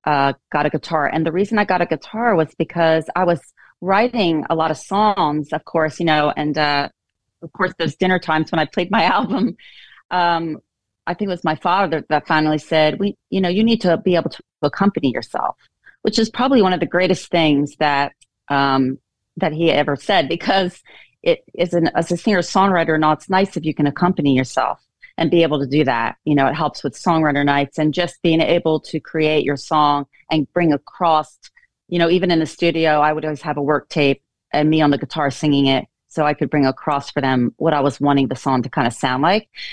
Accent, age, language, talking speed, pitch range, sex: American, 30-49, English, 225 wpm, 150-185 Hz, female